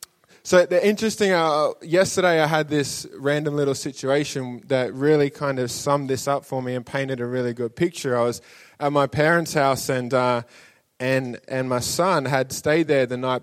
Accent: Australian